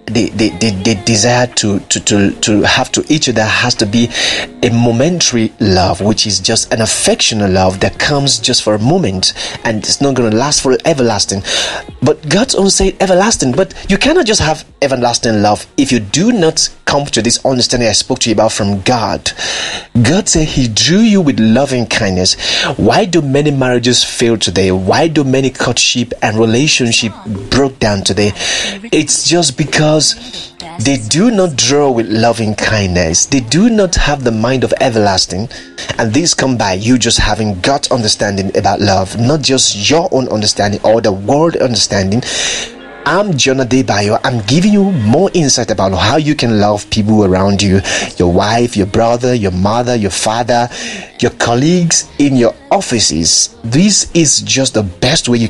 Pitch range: 105-140 Hz